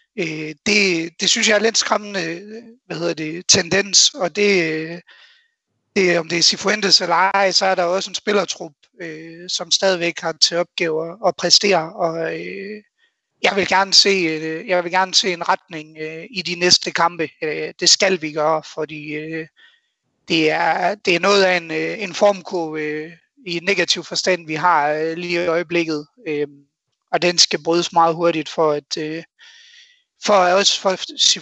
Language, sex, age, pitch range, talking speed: Danish, male, 30-49, 160-195 Hz, 155 wpm